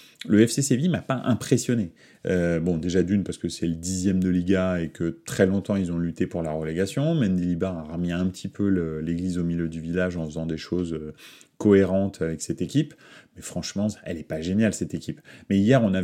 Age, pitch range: 30-49, 85-105 Hz